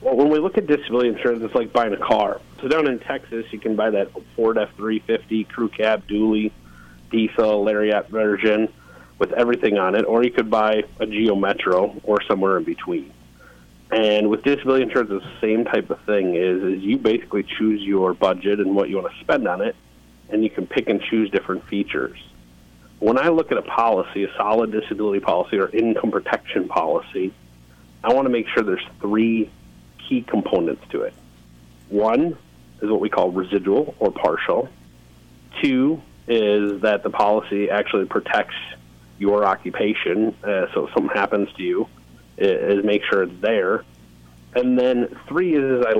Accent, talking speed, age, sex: American, 175 wpm, 40-59, male